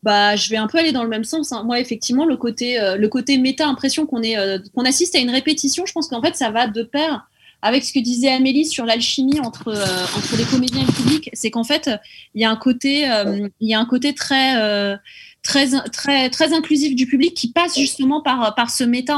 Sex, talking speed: female, 245 wpm